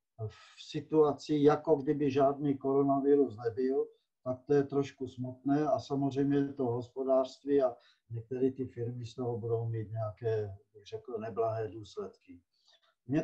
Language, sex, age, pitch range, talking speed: Czech, male, 50-69, 120-150 Hz, 130 wpm